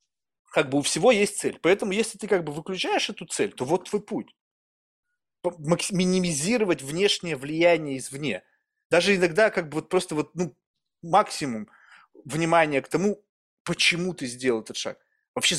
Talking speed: 155 wpm